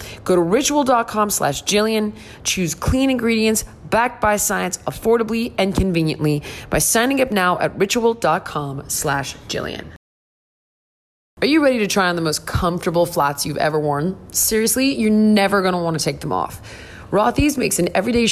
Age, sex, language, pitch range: 20-39, female, English, 155-215 Hz